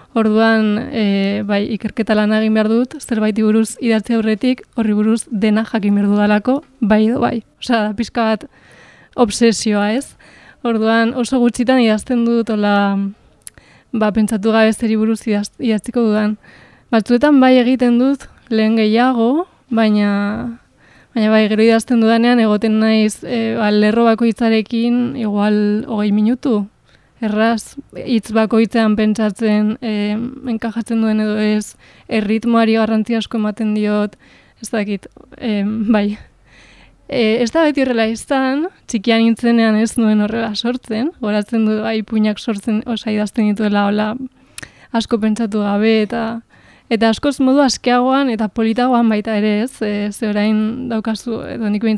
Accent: Spanish